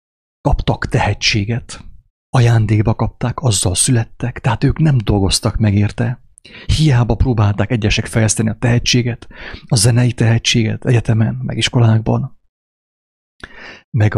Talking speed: 105 wpm